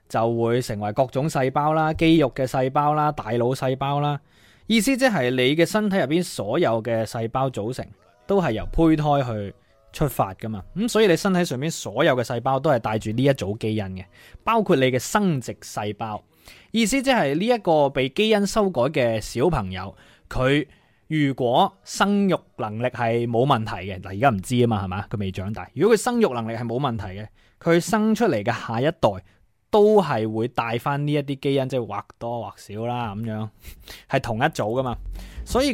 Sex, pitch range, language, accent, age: male, 110-160 Hz, Chinese, native, 20-39